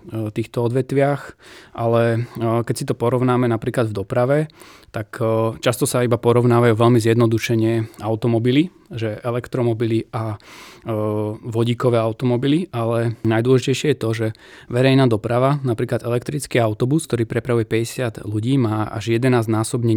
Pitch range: 110-125 Hz